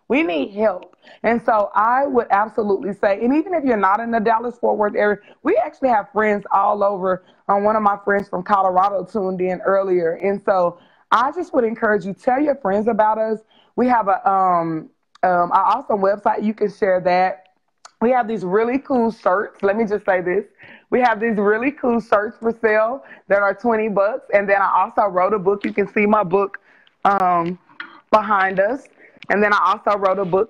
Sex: female